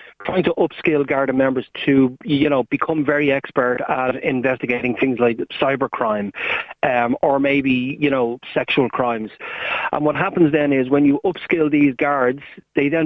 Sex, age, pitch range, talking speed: male, 30-49, 130-150 Hz, 165 wpm